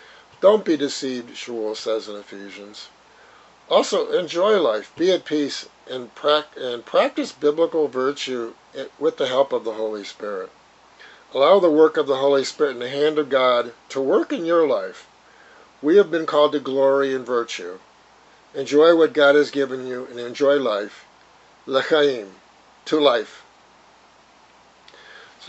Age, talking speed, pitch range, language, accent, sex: 50-69, 145 wpm, 120-150 Hz, English, American, male